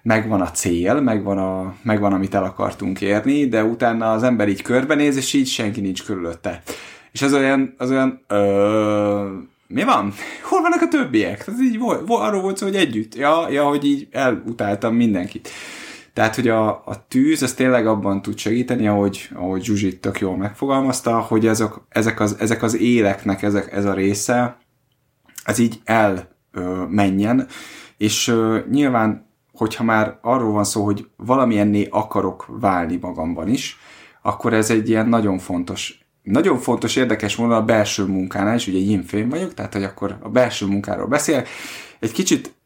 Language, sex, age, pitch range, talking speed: Hungarian, male, 20-39, 100-120 Hz, 160 wpm